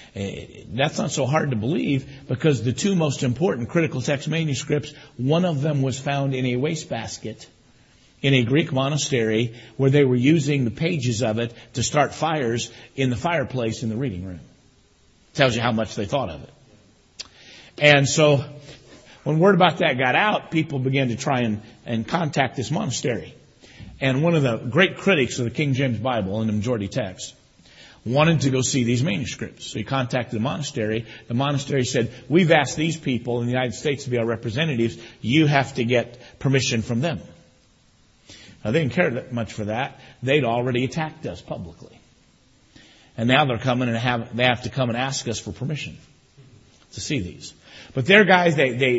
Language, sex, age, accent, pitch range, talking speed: English, male, 50-69, American, 120-145 Hz, 190 wpm